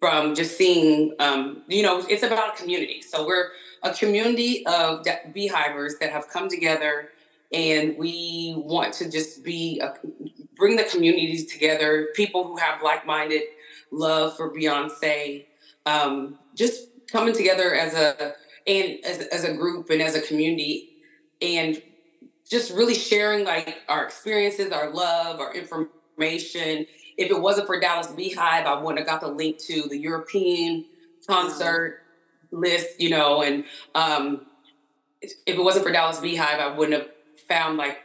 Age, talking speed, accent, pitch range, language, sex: 20-39, 155 wpm, American, 150-180 Hz, English, female